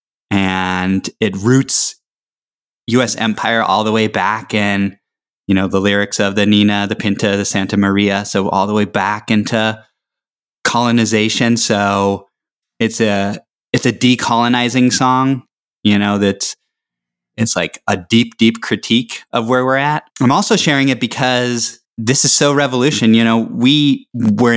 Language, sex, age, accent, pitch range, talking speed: English, male, 20-39, American, 105-125 Hz, 150 wpm